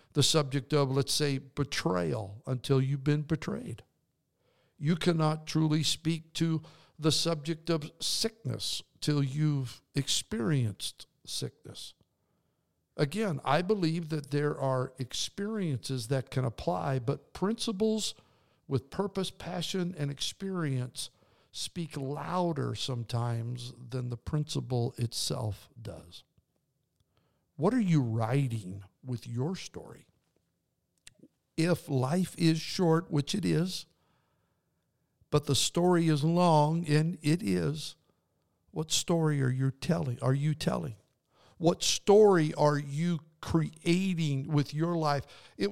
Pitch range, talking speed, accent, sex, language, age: 130-175 Hz, 115 wpm, American, male, English, 60-79